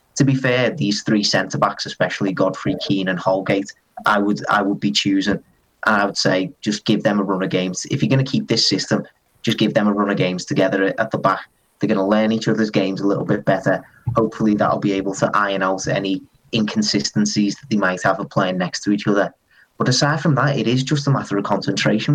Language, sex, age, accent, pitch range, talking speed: English, male, 30-49, British, 100-130 Hz, 240 wpm